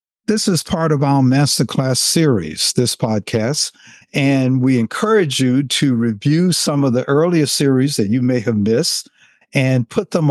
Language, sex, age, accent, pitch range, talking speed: English, male, 60-79, American, 110-150 Hz, 165 wpm